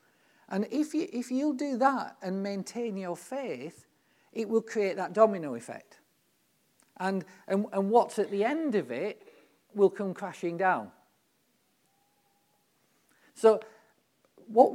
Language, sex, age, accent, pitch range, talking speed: English, male, 40-59, British, 165-220 Hz, 120 wpm